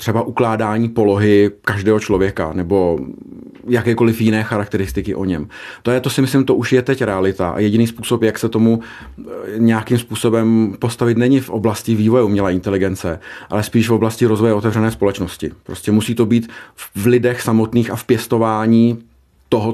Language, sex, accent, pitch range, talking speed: Czech, male, native, 105-120 Hz, 160 wpm